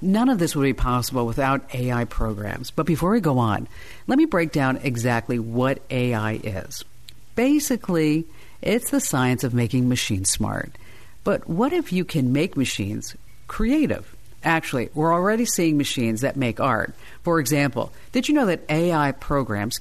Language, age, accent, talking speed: English, 50-69, American, 165 wpm